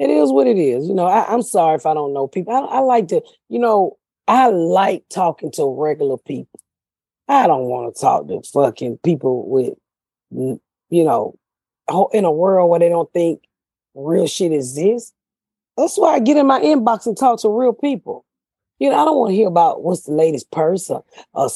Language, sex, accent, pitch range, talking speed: English, female, American, 155-240 Hz, 205 wpm